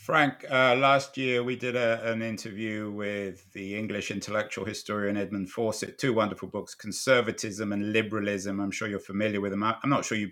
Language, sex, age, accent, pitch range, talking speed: English, male, 50-69, British, 110-140 Hz, 180 wpm